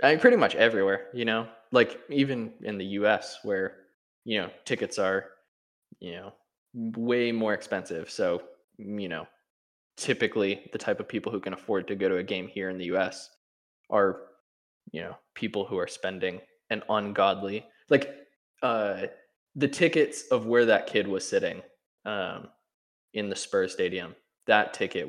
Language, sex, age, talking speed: English, male, 20-39, 160 wpm